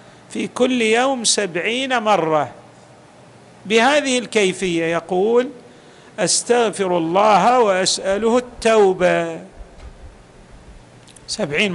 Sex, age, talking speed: male, 50-69, 65 wpm